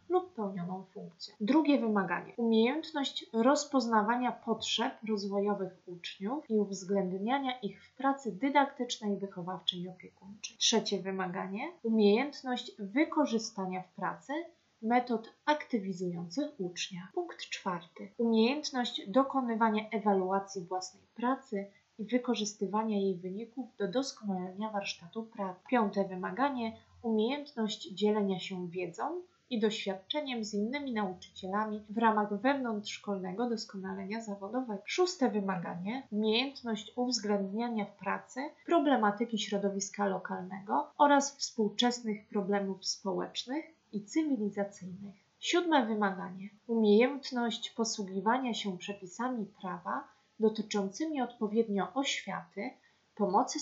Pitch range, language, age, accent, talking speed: 200-250 Hz, Polish, 30-49, native, 95 wpm